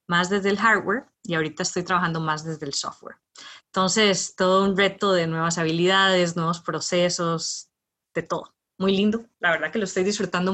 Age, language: 20-39, Spanish